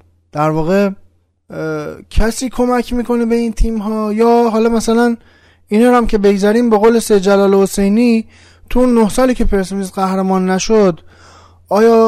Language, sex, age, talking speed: Persian, male, 20-39, 140 wpm